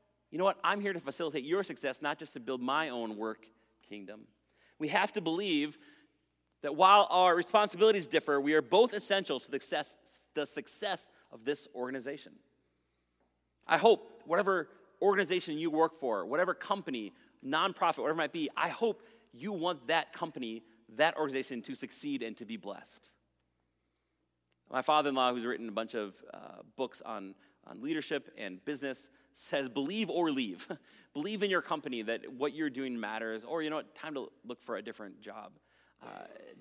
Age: 30-49